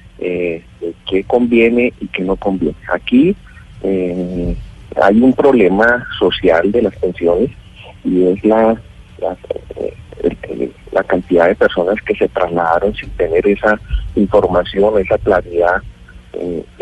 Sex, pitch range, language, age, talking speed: male, 90-135 Hz, Spanish, 30-49, 120 wpm